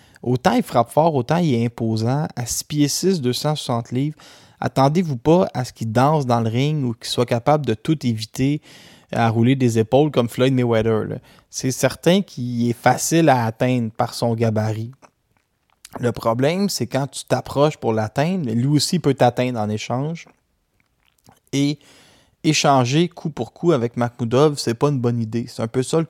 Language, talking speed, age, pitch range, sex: French, 180 wpm, 20-39, 115-150 Hz, male